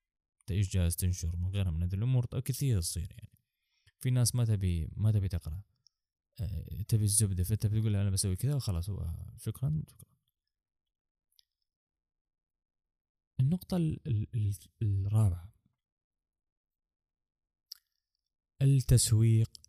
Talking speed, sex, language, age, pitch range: 100 wpm, male, Arabic, 20-39, 95-130 Hz